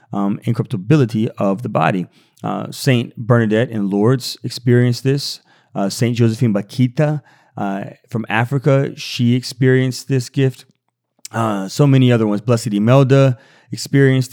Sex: male